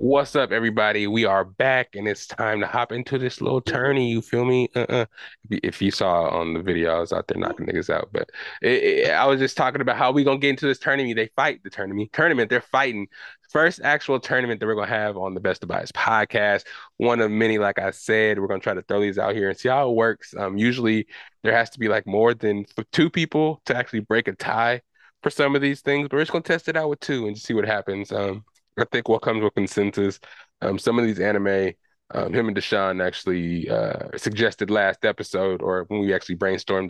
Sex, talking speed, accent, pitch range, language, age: male, 235 wpm, American, 100-125 Hz, English, 20-39